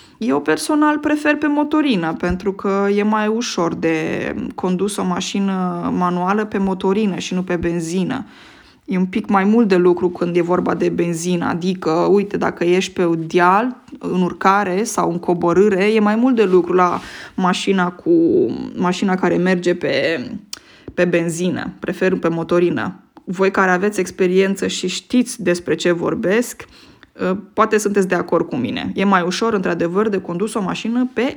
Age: 20-39